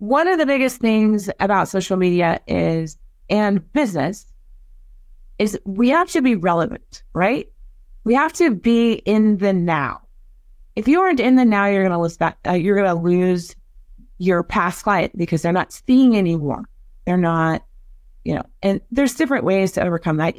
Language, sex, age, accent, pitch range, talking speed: English, female, 30-49, American, 165-220 Hz, 175 wpm